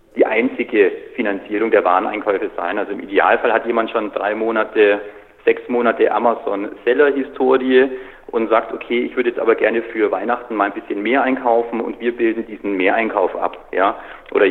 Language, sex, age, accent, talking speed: German, male, 40-59, German, 165 wpm